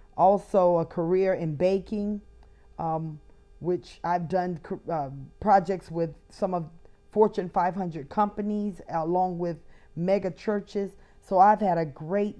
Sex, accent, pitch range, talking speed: female, American, 170-200 Hz, 125 wpm